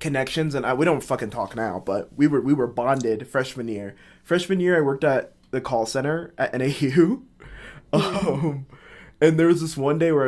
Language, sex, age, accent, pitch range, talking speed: English, male, 20-39, American, 110-140 Hz, 200 wpm